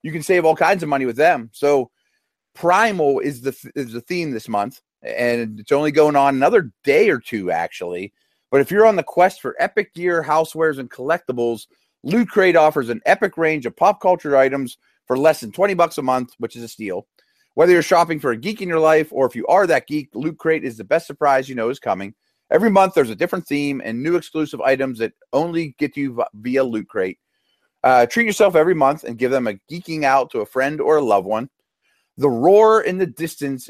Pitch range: 130-175 Hz